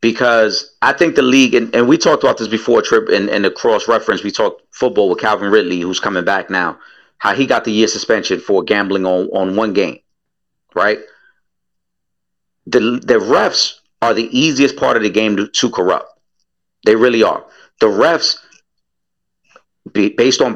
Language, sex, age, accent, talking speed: English, male, 40-59, American, 175 wpm